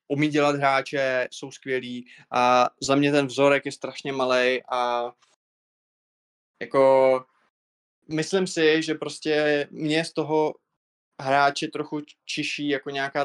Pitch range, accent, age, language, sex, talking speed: 130-145 Hz, native, 20-39, Czech, male, 120 wpm